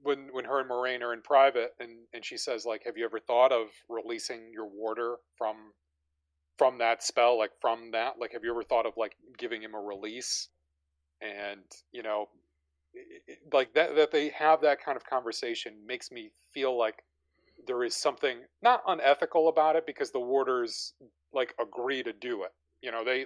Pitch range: 95-130 Hz